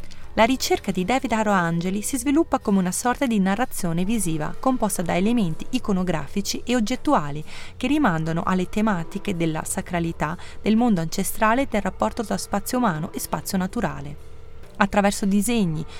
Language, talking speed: Italian, 145 wpm